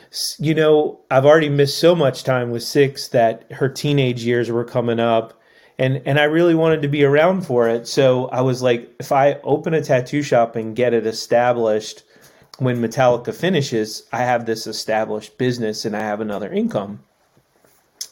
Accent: American